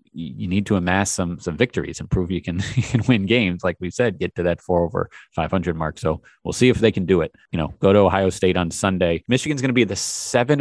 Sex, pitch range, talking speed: male, 90-105 Hz, 265 wpm